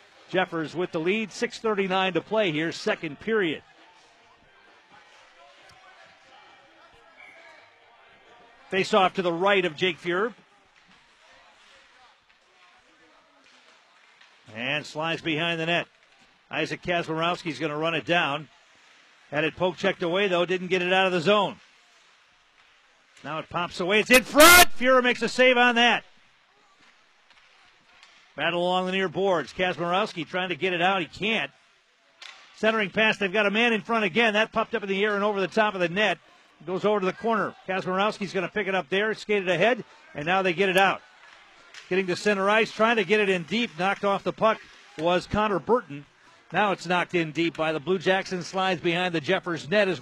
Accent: American